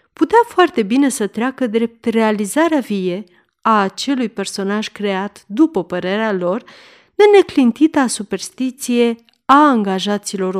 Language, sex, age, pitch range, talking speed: Romanian, female, 40-59, 200-280 Hz, 115 wpm